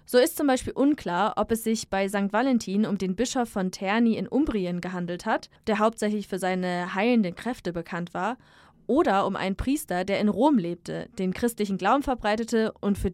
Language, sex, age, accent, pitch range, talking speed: German, female, 20-39, German, 185-230 Hz, 190 wpm